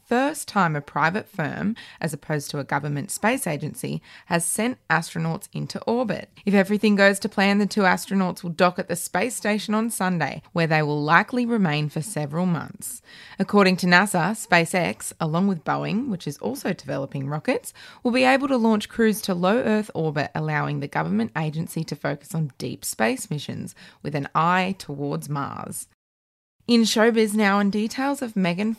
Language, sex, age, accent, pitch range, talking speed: English, female, 20-39, Australian, 155-215 Hz, 175 wpm